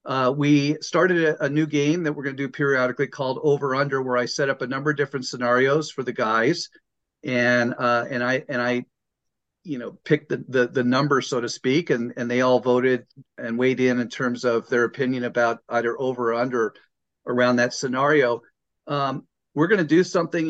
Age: 40-59